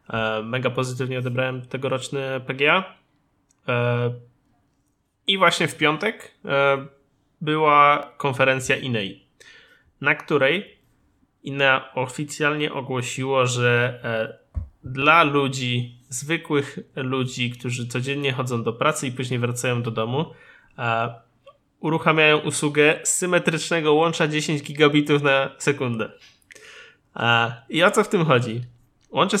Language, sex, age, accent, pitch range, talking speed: Polish, male, 20-39, native, 125-150 Hz, 95 wpm